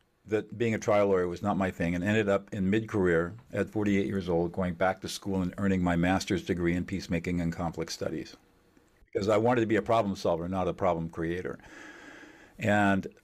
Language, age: English, 50-69